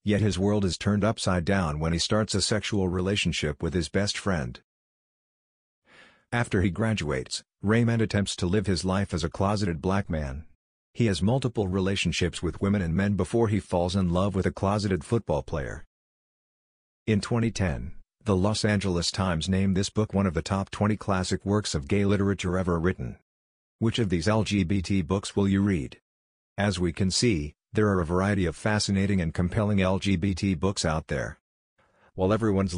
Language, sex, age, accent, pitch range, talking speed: English, male, 50-69, American, 90-105 Hz, 175 wpm